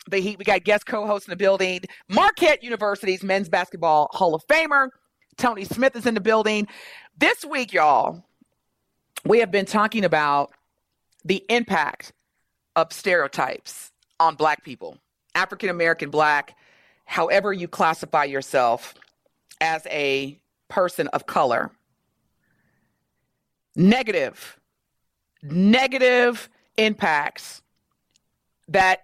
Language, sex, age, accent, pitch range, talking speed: English, female, 40-59, American, 160-215 Hz, 105 wpm